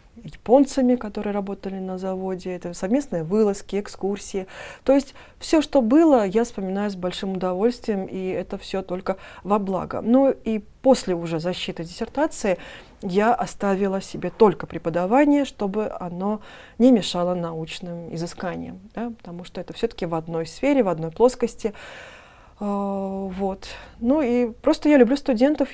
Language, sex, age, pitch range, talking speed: Russian, female, 20-39, 185-235 Hz, 135 wpm